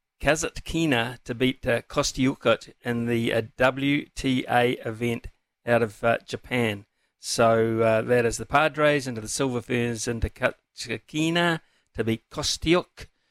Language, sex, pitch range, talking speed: English, male, 115-150 Hz, 130 wpm